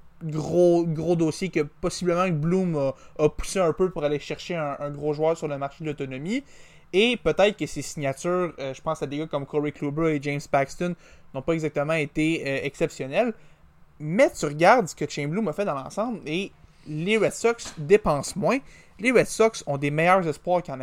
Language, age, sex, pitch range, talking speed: French, 20-39, male, 145-195 Hz, 200 wpm